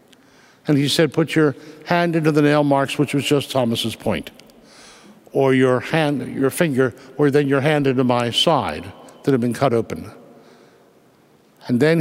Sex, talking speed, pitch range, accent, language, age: male, 170 wpm, 145-185 Hz, American, English, 60-79